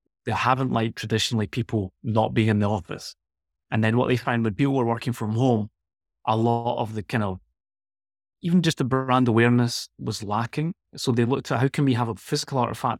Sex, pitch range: male, 110-130 Hz